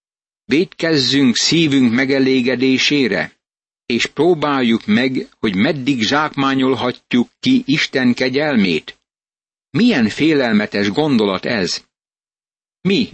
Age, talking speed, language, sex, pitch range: 60-79, 80 wpm, Hungarian, male, 120-160 Hz